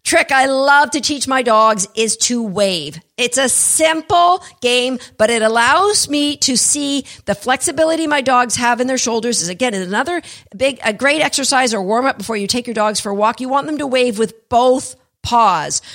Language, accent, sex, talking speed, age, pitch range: English, American, female, 195 wpm, 50-69, 200-275 Hz